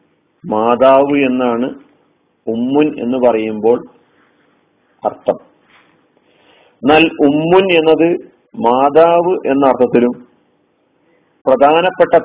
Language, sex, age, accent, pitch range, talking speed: Malayalam, male, 40-59, native, 130-165 Hz, 65 wpm